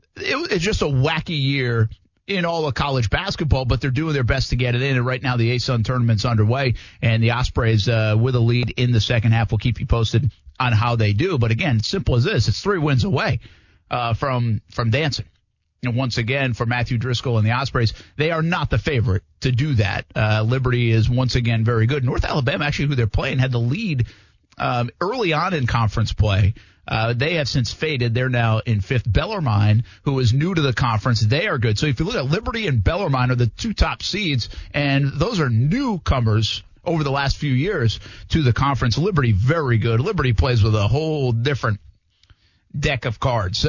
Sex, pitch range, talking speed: male, 110-140 Hz, 210 wpm